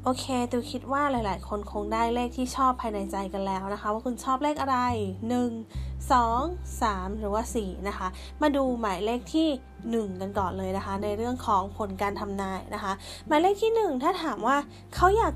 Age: 20-39